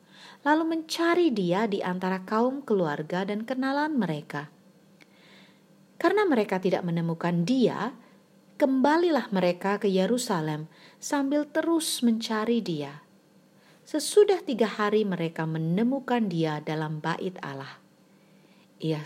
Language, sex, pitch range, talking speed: Indonesian, female, 175-245 Hz, 105 wpm